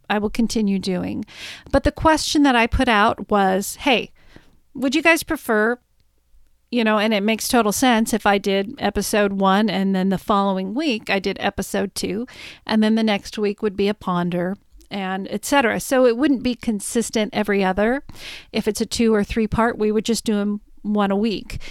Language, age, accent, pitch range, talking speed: English, 40-59, American, 200-255 Hz, 200 wpm